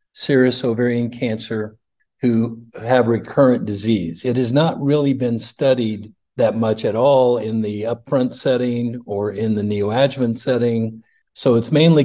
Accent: American